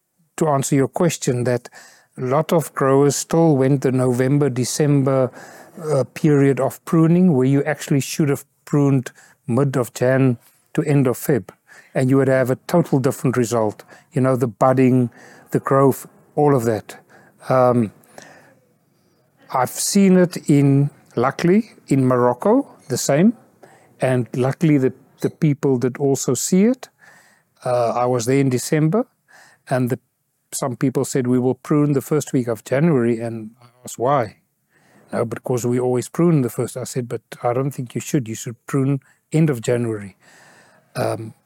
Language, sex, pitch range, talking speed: English, male, 125-150 Hz, 160 wpm